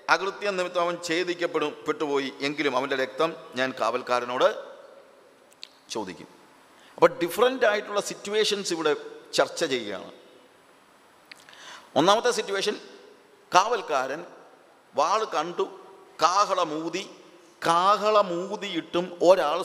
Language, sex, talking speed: English, male, 45 wpm